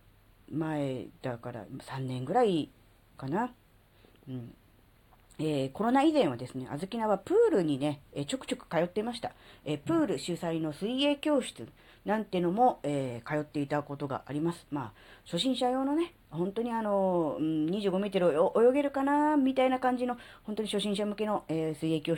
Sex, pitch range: female, 135-220 Hz